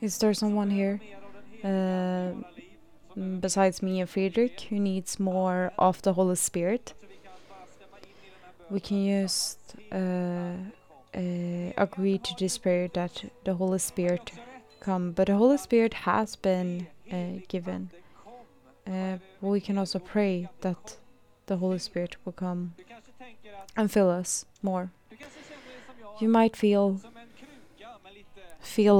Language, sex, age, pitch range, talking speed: Swedish, female, 20-39, 185-210 Hz, 120 wpm